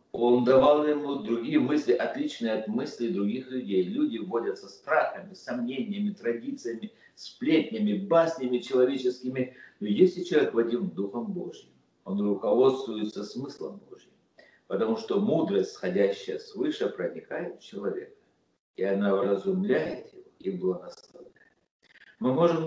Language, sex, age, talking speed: Russian, male, 50-69, 115 wpm